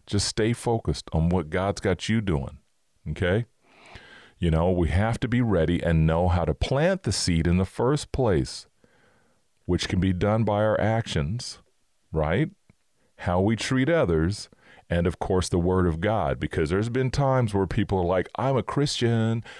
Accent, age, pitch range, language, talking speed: American, 40-59, 85-105 Hz, English, 180 wpm